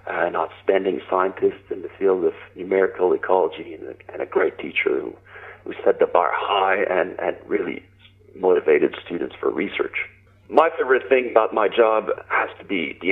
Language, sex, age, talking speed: English, male, 40-59, 175 wpm